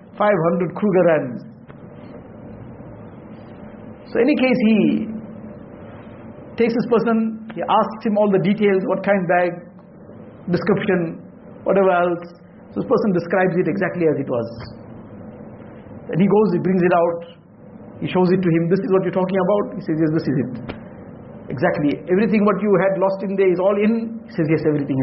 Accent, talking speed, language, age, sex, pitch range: Indian, 170 wpm, English, 60-79, male, 160-215 Hz